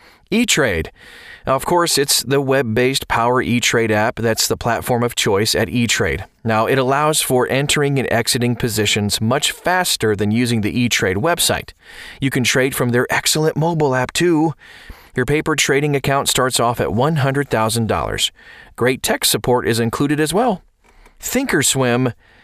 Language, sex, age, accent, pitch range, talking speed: English, male, 30-49, American, 115-145 Hz, 150 wpm